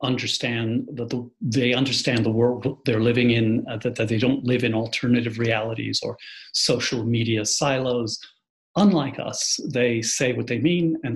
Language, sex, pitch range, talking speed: English, male, 120-160 Hz, 160 wpm